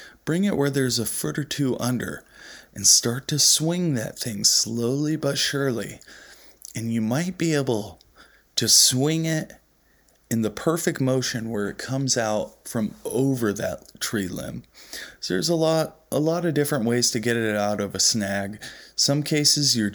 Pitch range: 110-135 Hz